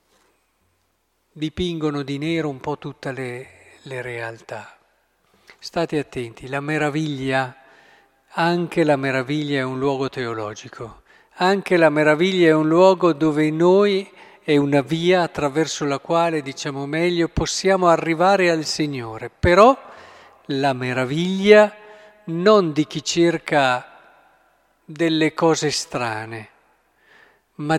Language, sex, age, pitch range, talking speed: Italian, male, 50-69, 140-175 Hz, 110 wpm